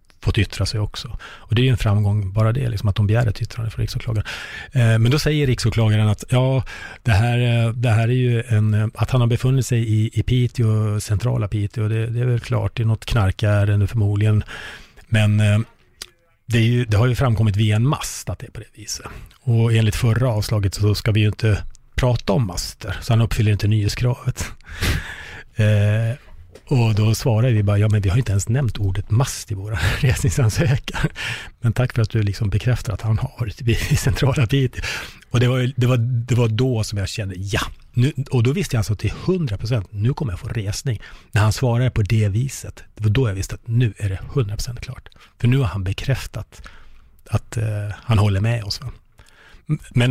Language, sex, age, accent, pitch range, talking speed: Swedish, male, 30-49, Norwegian, 105-120 Hz, 215 wpm